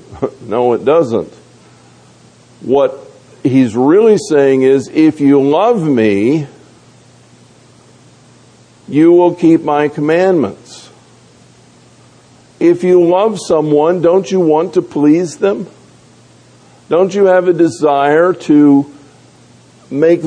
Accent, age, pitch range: American, 50-69, 140-170 Hz